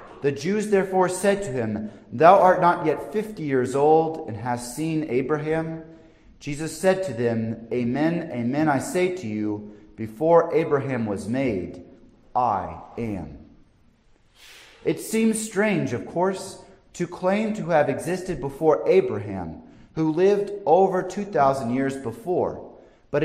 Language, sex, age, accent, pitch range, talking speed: English, male, 30-49, American, 115-175 Hz, 135 wpm